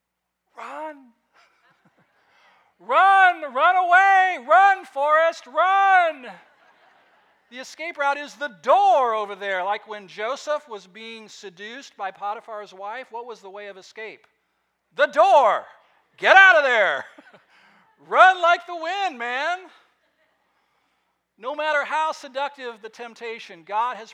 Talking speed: 120 wpm